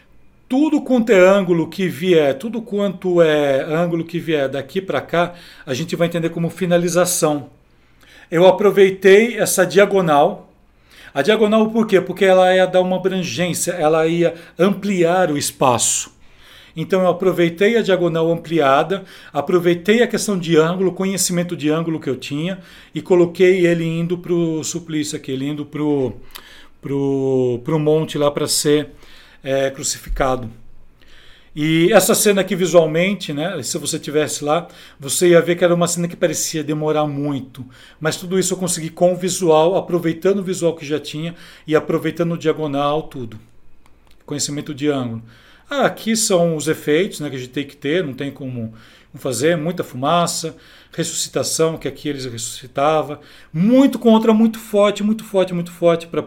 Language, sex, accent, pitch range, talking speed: Portuguese, male, Brazilian, 145-185 Hz, 160 wpm